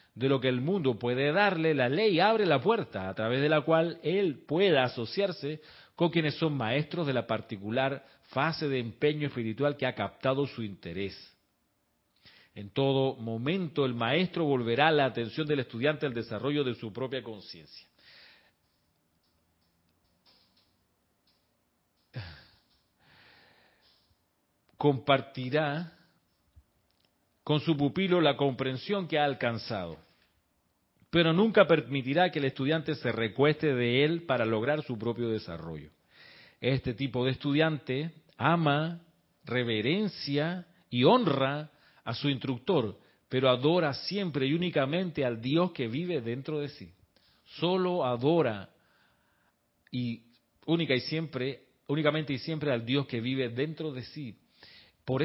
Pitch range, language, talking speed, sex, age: 115-155 Hz, Spanish, 125 wpm, male, 40-59